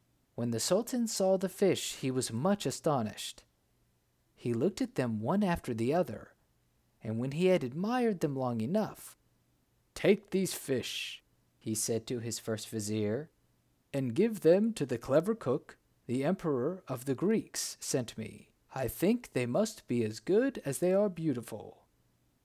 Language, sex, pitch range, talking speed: English, male, 120-195 Hz, 160 wpm